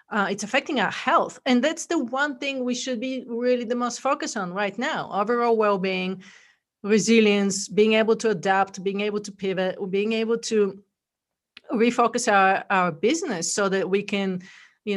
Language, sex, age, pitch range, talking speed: English, female, 40-59, 195-245 Hz, 170 wpm